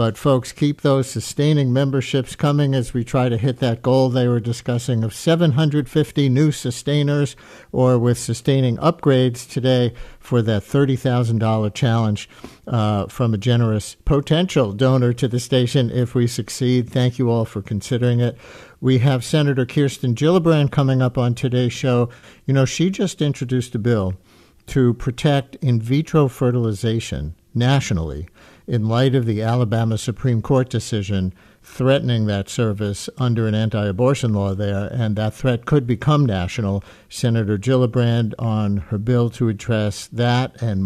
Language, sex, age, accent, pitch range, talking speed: English, male, 50-69, American, 115-145 Hz, 150 wpm